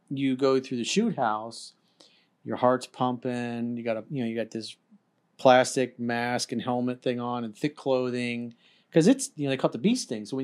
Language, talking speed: English, 220 wpm